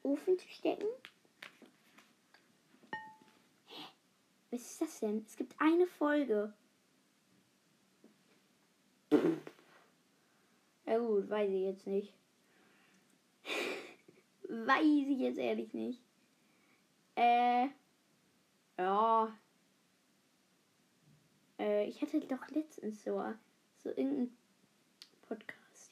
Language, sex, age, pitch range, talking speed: German, female, 20-39, 215-290 Hz, 80 wpm